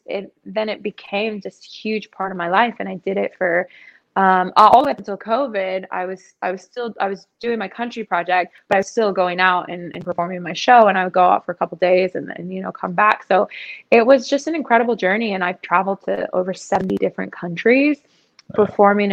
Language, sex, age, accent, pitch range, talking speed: English, female, 20-39, American, 185-225 Hz, 230 wpm